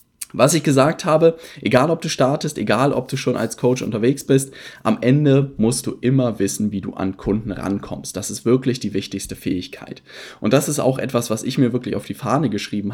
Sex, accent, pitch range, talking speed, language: male, German, 105-135 Hz, 215 wpm, German